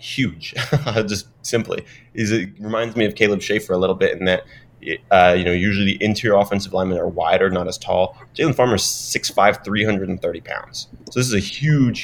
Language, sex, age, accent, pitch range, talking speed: English, male, 20-39, American, 95-115 Hz, 195 wpm